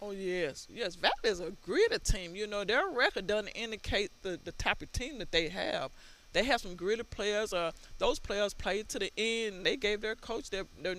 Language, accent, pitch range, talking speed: English, American, 180-225 Hz, 230 wpm